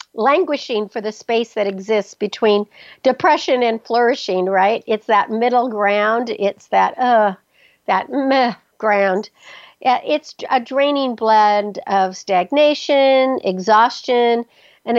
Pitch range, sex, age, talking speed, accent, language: 200-245 Hz, female, 60-79, 115 wpm, American, English